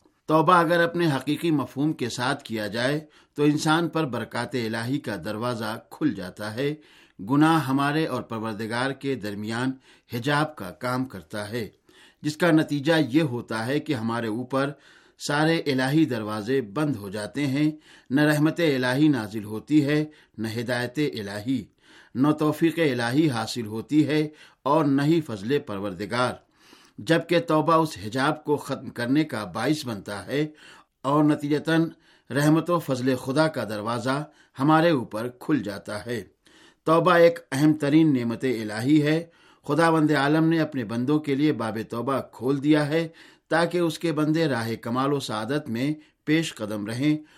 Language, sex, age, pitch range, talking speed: Urdu, male, 60-79, 115-155 Hz, 155 wpm